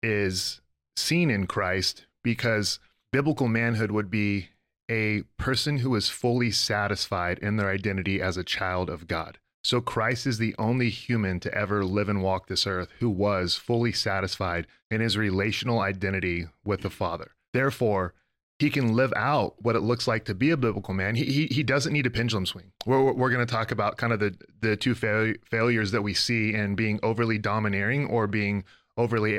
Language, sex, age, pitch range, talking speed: English, male, 30-49, 100-120 Hz, 190 wpm